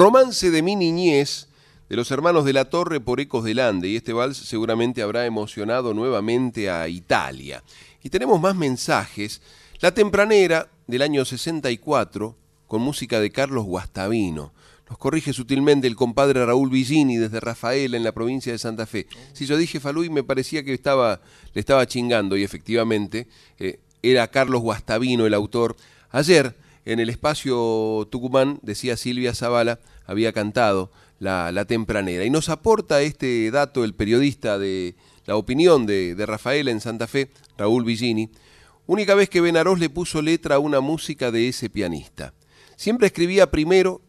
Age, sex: 40-59, male